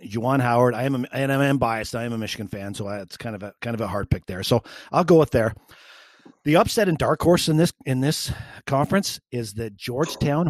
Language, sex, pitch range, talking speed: English, male, 110-140 Hz, 250 wpm